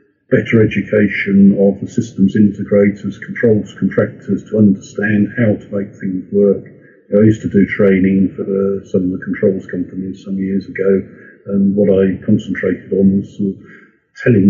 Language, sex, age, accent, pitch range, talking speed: English, male, 50-69, British, 95-110 Hz, 165 wpm